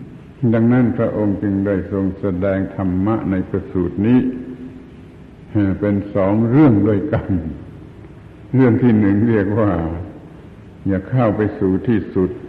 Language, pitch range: Thai, 95-110 Hz